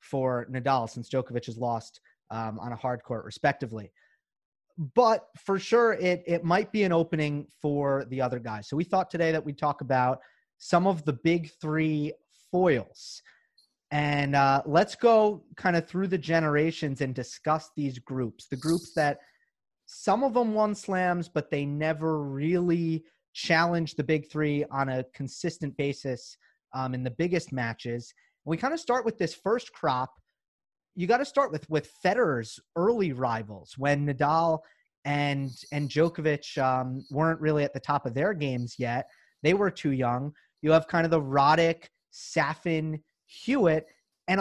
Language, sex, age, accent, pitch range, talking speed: English, male, 30-49, American, 135-180 Hz, 165 wpm